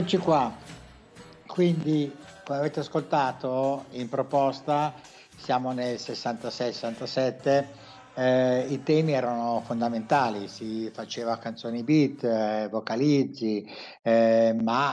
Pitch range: 125-155 Hz